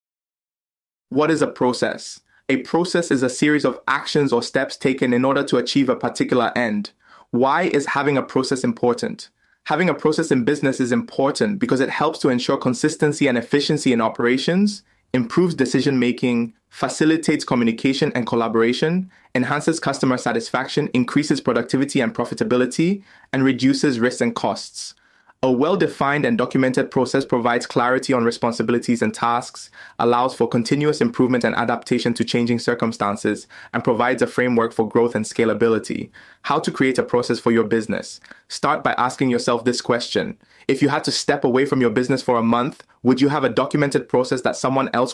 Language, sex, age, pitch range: English, male, 20-39, 120-140 Hz